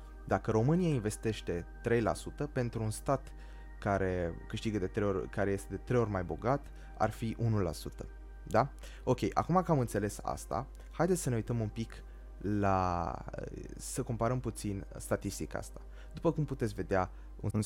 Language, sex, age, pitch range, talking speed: Romanian, male, 20-39, 90-115 Hz, 155 wpm